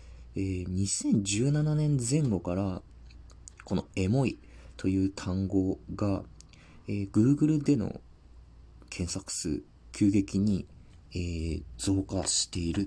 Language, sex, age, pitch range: Japanese, male, 40-59, 80-110 Hz